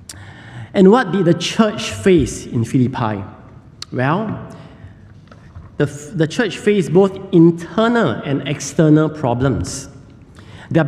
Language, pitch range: English, 135-195 Hz